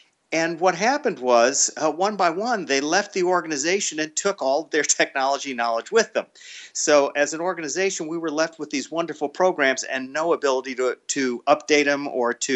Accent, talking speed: American, 190 wpm